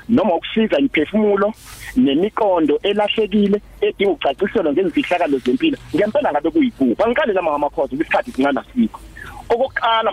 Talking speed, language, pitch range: 140 wpm, English, 185-280 Hz